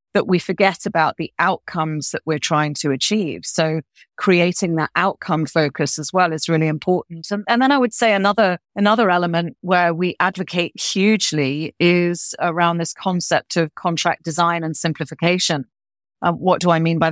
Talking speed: 170 wpm